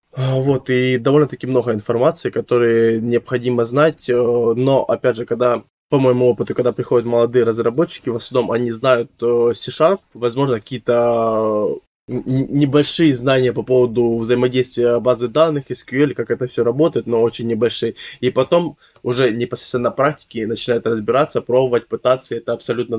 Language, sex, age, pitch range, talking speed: Ukrainian, male, 20-39, 115-130 Hz, 140 wpm